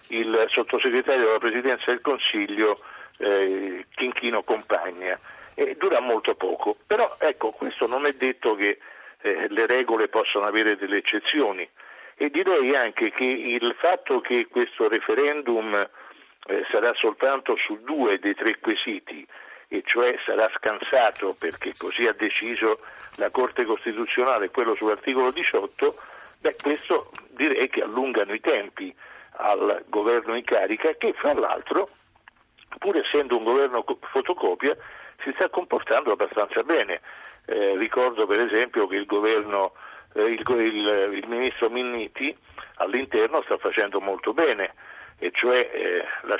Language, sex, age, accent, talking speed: Italian, male, 50-69, native, 135 wpm